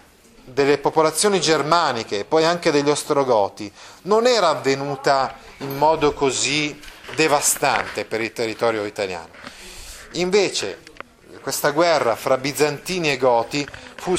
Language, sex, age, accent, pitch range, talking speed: Italian, male, 30-49, native, 120-160 Hz, 115 wpm